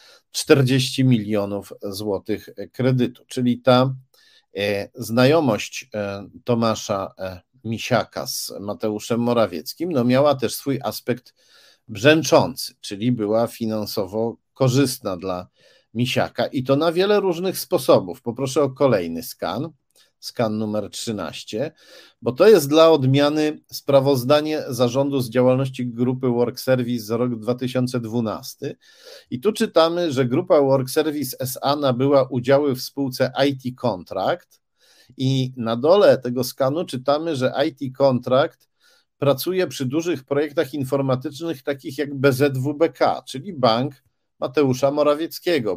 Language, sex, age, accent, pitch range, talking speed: Polish, male, 50-69, native, 120-140 Hz, 115 wpm